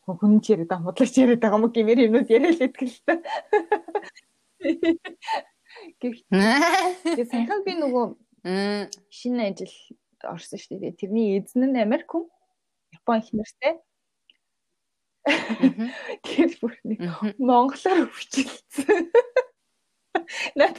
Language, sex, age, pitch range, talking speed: Russian, female, 20-39, 205-300 Hz, 95 wpm